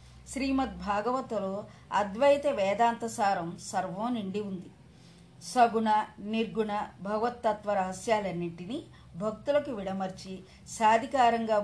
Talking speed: 70 wpm